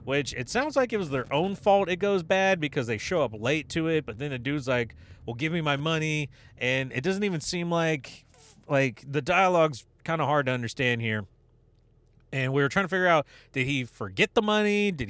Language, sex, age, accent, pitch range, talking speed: English, male, 30-49, American, 120-185 Hz, 225 wpm